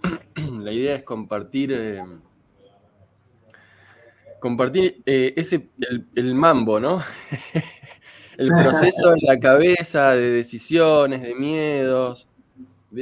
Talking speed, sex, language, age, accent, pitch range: 100 wpm, male, Spanish, 20-39, Argentinian, 105-140 Hz